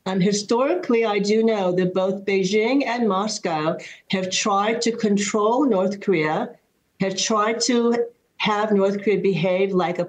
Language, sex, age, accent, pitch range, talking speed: English, female, 60-79, American, 175-225 Hz, 150 wpm